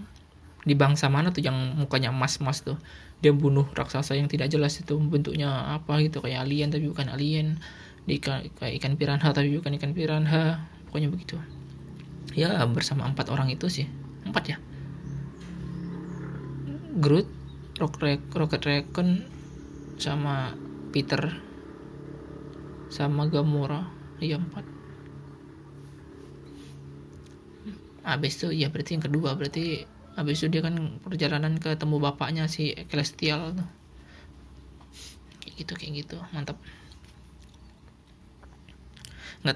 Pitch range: 135-155 Hz